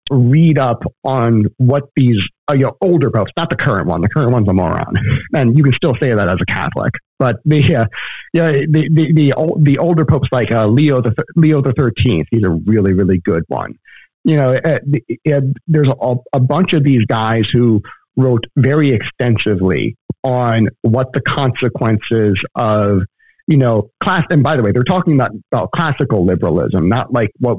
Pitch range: 110-140 Hz